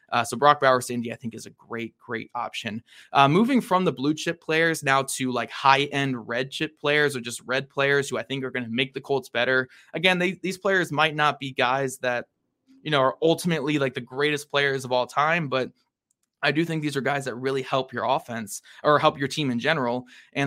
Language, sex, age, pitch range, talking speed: English, male, 20-39, 120-145 Hz, 235 wpm